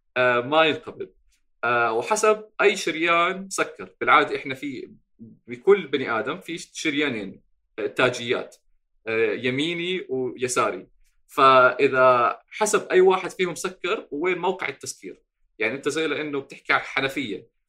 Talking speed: 125 wpm